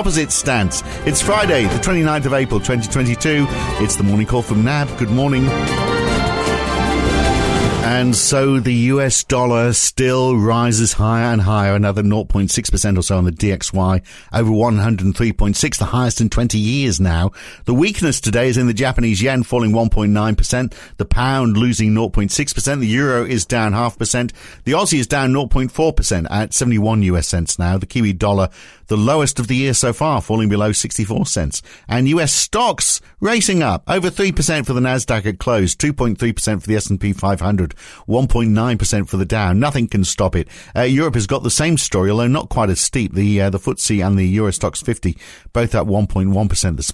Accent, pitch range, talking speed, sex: British, 100-130 Hz, 175 wpm, male